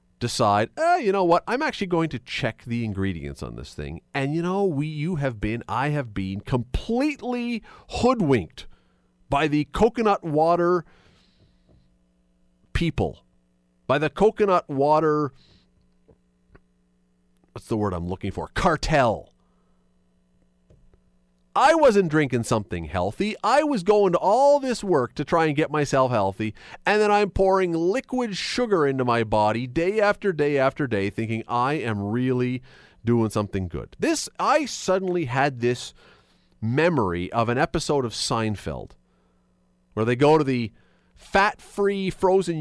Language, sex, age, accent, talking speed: English, male, 40-59, American, 140 wpm